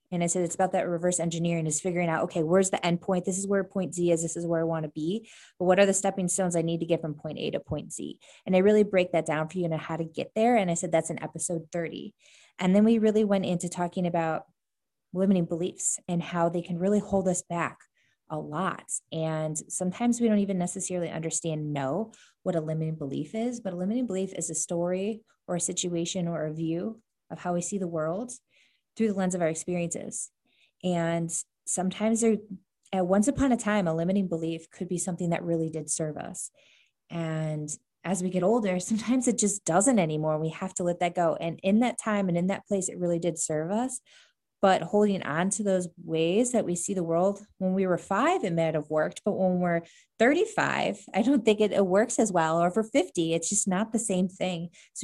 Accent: American